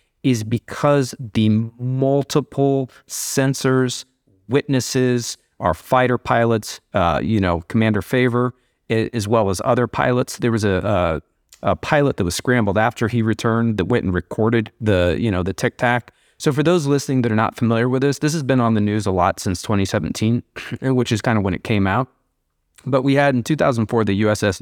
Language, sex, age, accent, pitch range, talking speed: English, male, 30-49, American, 105-130 Hz, 185 wpm